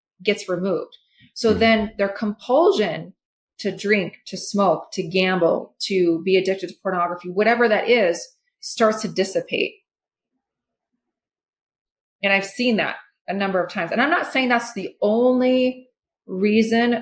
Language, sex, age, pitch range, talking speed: English, female, 30-49, 185-235 Hz, 140 wpm